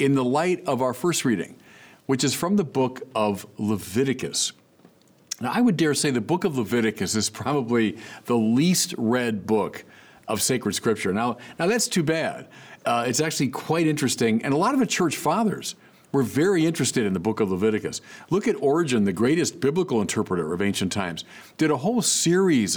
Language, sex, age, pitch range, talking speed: English, male, 50-69, 110-155 Hz, 185 wpm